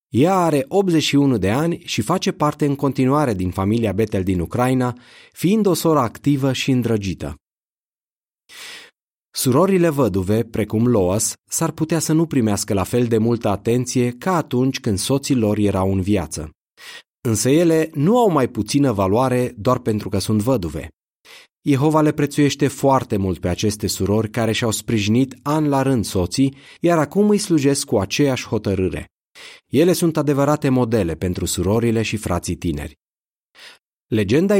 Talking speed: 150 wpm